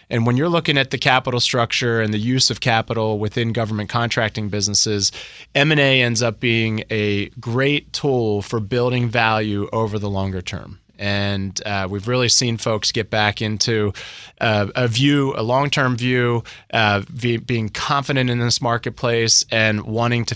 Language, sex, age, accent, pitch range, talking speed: English, male, 20-39, American, 110-130 Hz, 160 wpm